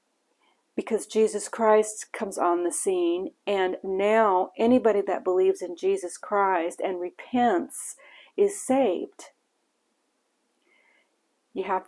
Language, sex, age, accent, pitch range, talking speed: English, female, 50-69, American, 190-245 Hz, 105 wpm